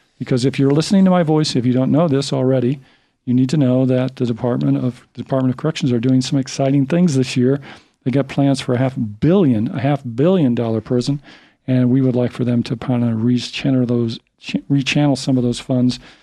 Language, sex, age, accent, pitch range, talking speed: English, male, 40-59, American, 125-140 Hz, 225 wpm